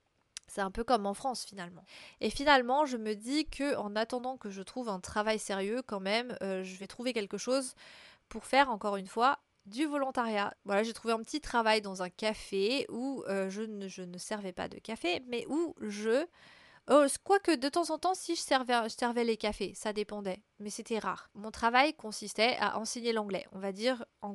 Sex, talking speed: female, 210 wpm